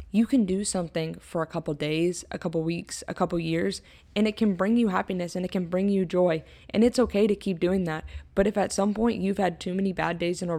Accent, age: American, 20-39